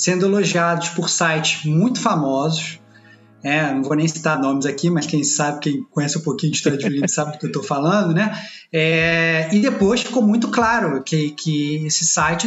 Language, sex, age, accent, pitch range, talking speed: Portuguese, male, 20-39, Brazilian, 155-230 Hz, 190 wpm